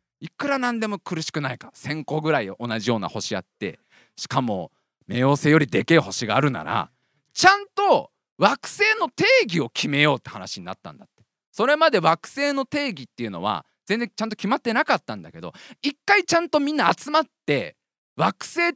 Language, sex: Japanese, male